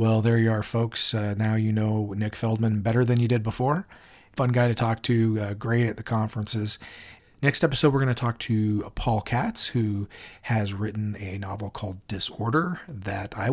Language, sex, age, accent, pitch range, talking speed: English, male, 40-59, American, 105-125 Hz, 195 wpm